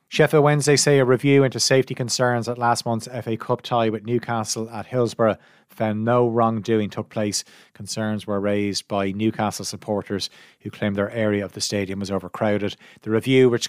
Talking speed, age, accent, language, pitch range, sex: 180 wpm, 30-49, Irish, English, 105-125 Hz, male